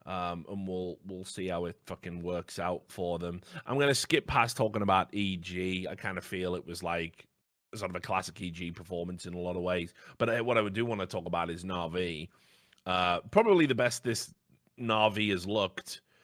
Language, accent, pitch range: English, British, 90-105 Hz